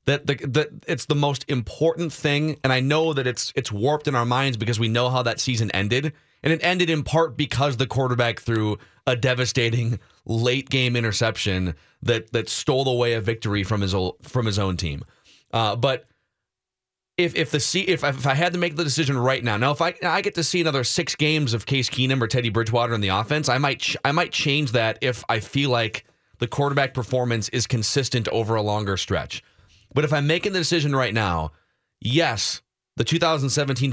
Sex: male